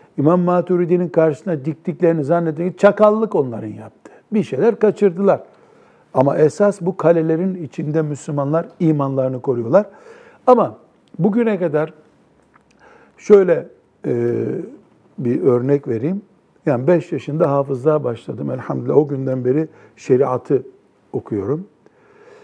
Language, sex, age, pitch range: Turkish, male, 60-79, 140-190 Hz